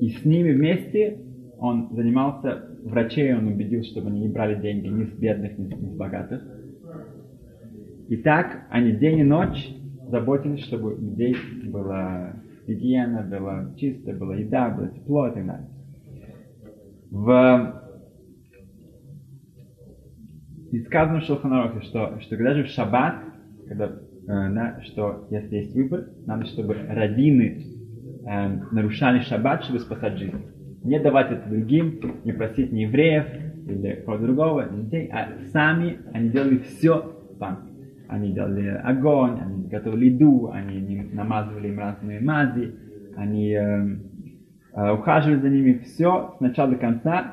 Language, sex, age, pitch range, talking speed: Russian, male, 20-39, 105-140 Hz, 135 wpm